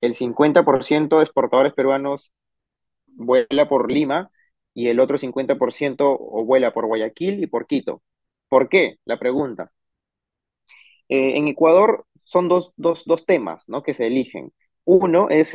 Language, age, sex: Spanish, 30-49, male